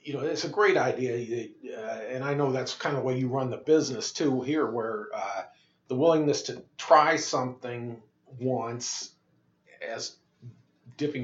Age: 40-59